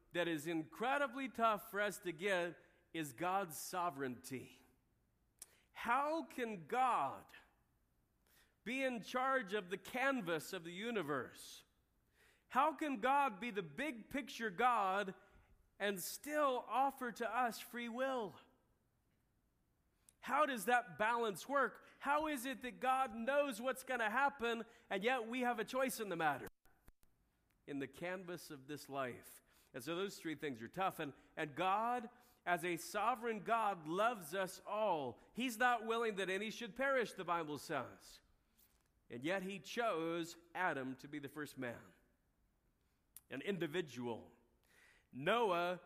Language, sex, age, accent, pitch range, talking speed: English, male, 40-59, American, 160-240 Hz, 140 wpm